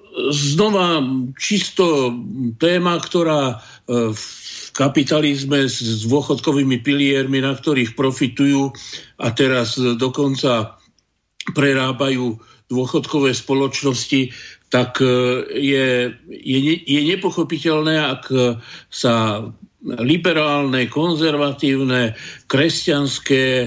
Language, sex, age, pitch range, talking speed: Slovak, male, 50-69, 120-150 Hz, 70 wpm